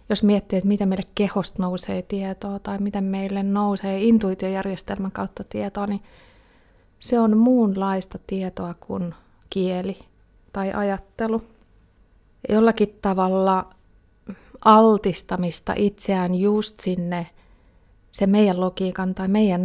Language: Finnish